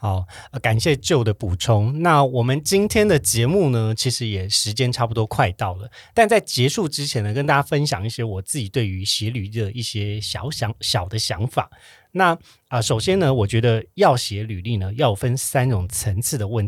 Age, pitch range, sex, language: 30-49, 110-145 Hz, male, Chinese